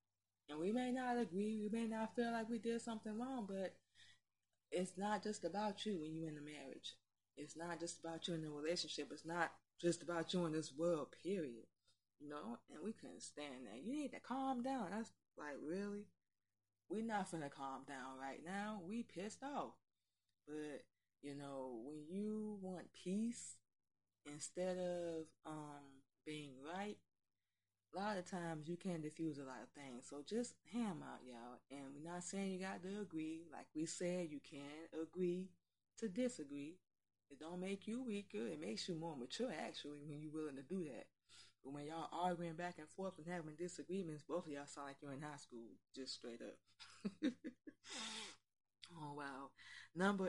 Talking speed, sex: 185 wpm, female